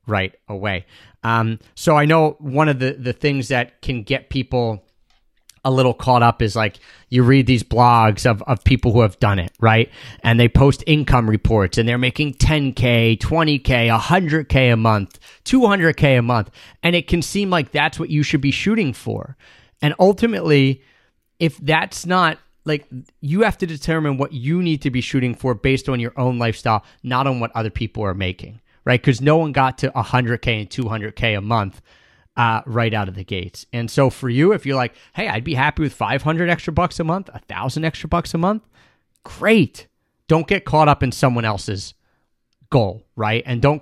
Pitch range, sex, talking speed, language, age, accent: 110-150 Hz, male, 195 wpm, English, 30-49, American